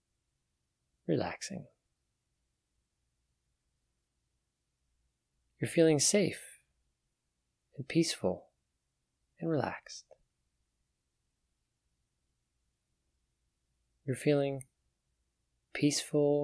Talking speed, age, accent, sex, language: 40 wpm, 30-49, American, male, English